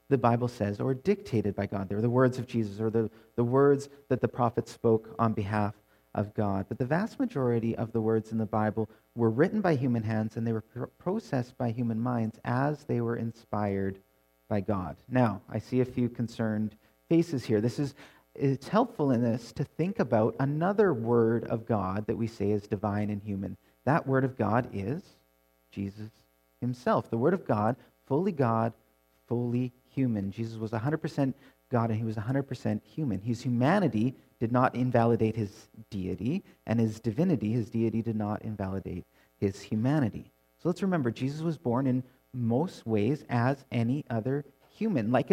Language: English